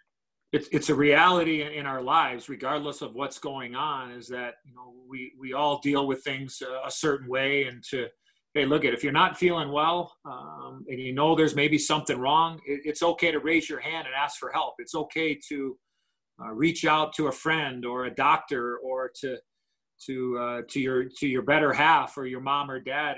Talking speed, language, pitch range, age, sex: 195 wpm, English, 130-150 Hz, 40-59, male